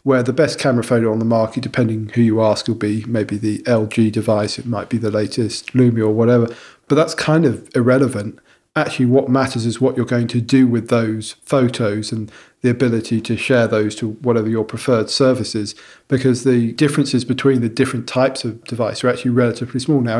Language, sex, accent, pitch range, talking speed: English, male, British, 115-135 Hz, 200 wpm